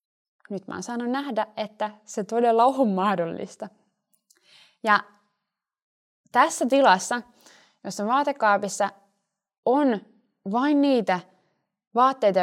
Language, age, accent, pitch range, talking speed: Finnish, 20-39, native, 200-260 Hz, 90 wpm